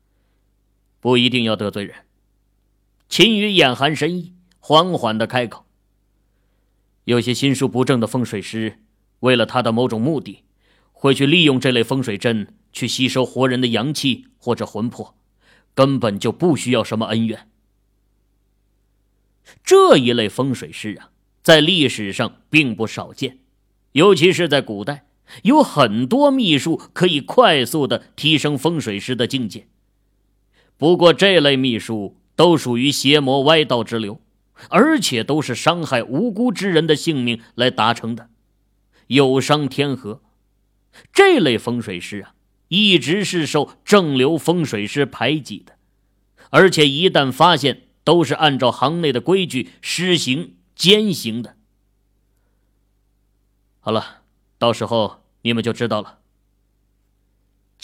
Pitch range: 100-150 Hz